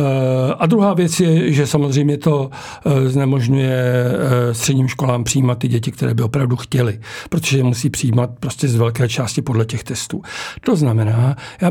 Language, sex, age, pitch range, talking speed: Czech, male, 60-79, 120-145 Hz, 160 wpm